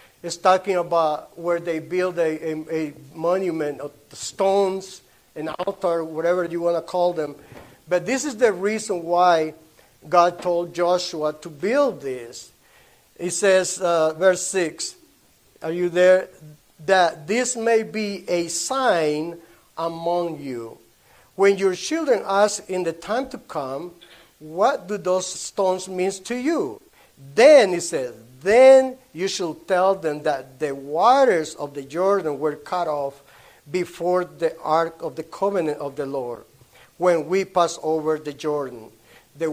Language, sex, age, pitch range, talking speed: English, male, 50-69, 155-185 Hz, 150 wpm